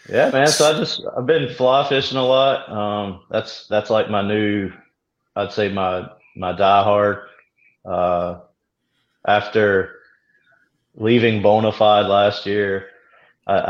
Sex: male